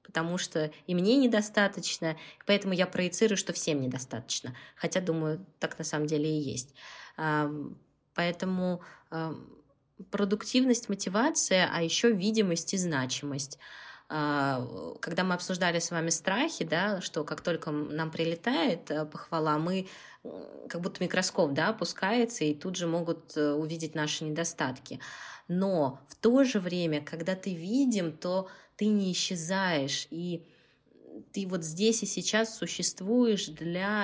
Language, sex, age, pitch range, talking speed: Russian, female, 20-39, 155-195 Hz, 130 wpm